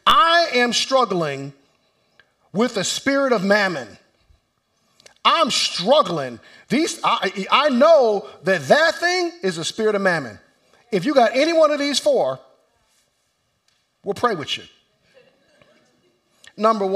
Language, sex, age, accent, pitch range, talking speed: English, male, 50-69, American, 180-300 Hz, 125 wpm